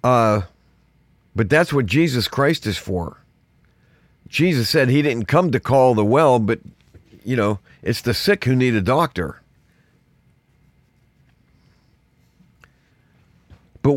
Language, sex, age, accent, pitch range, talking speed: English, male, 50-69, American, 105-150 Hz, 120 wpm